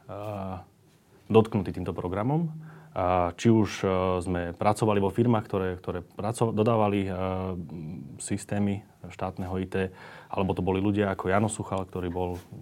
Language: Slovak